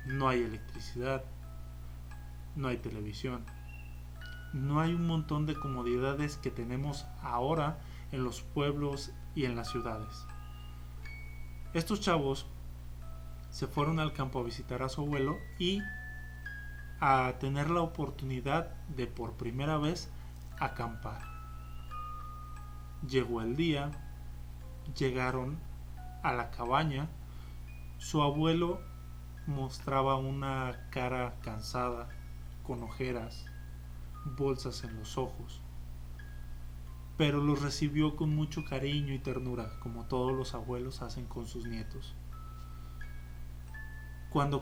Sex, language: male, Spanish